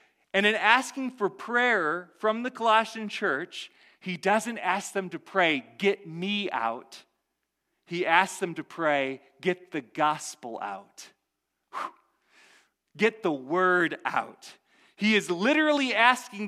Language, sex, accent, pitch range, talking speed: English, male, American, 165-225 Hz, 125 wpm